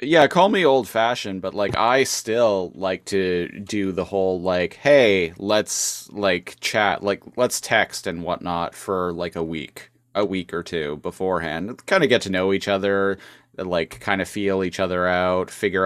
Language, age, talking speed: English, 30-49, 180 wpm